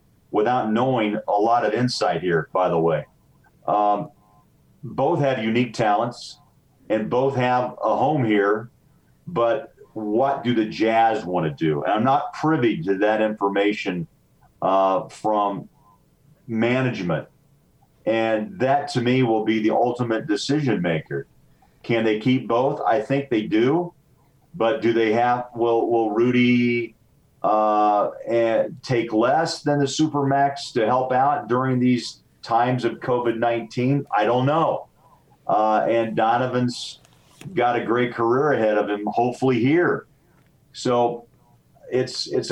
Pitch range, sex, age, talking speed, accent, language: 110-130 Hz, male, 40-59, 140 wpm, American, English